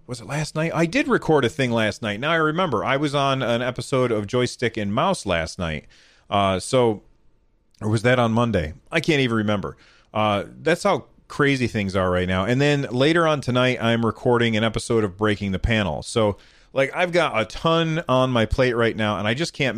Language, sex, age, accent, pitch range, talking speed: English, male, 30-49, American, 110-135 Hz, 220 wpm